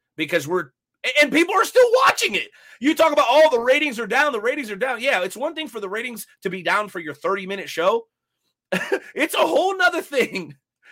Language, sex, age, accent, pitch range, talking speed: English, male, 30-49, American, 185-285 Hz, 225 wpm